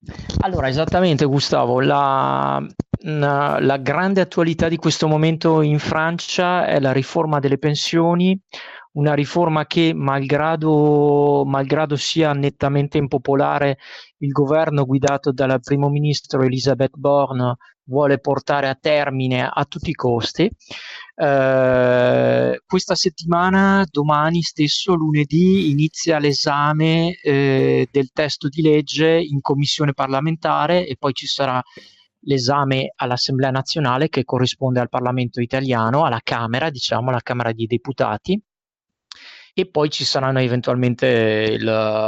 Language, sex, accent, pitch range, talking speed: Italian, male, native, 130-155 Hz, 115 wpm